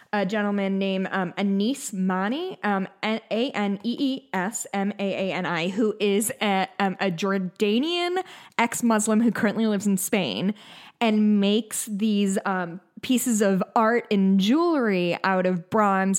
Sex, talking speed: female, 120 wpm